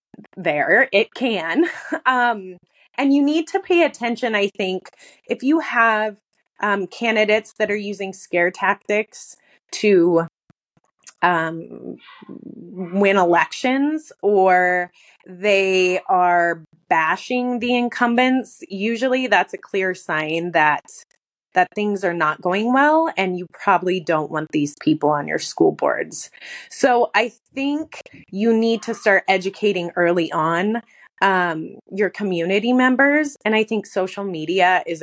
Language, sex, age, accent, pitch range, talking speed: English, female, 20-39, American, 175-230 Hz, 130 wpm